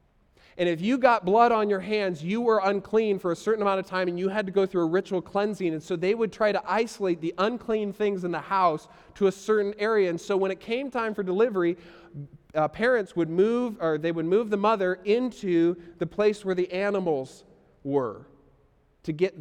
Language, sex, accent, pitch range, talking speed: English, male, American, 165-215 Hz, 215 wpm